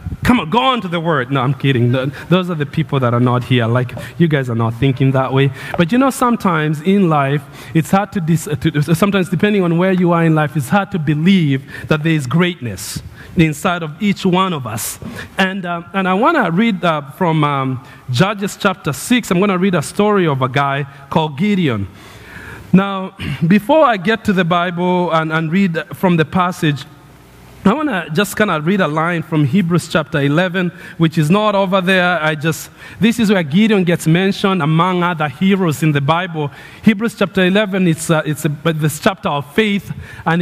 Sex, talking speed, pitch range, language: male, 210 wpm, 150-200 Hz, English